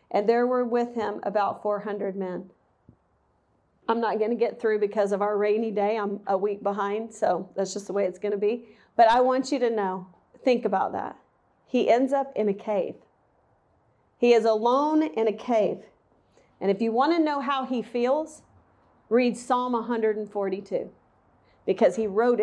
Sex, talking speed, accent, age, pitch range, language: female, 180 wpm, American, 40-59, 210-255 Hz, English